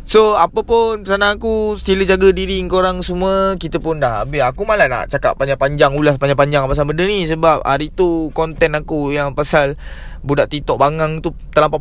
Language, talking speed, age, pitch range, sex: Malay, 180 wpm, 20-39, 145-185 Hz, male